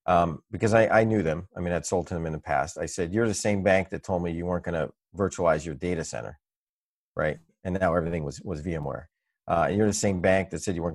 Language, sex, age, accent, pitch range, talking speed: English, male, 40-59, American, 85-110 Hz, 270 wpm